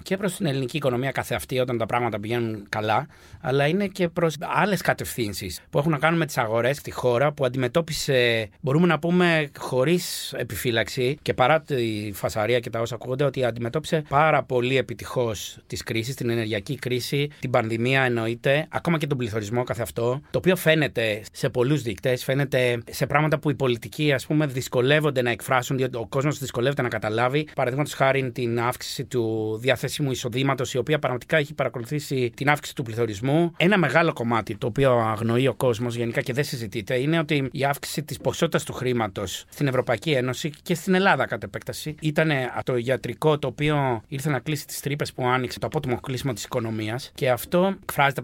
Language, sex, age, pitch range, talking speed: Greek, male, 30-49, 120-150 Hz, 180 wpm